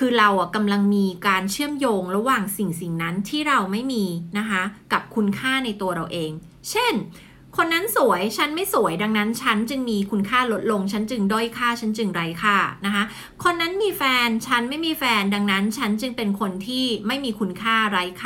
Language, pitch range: Thai, 195-245 Hz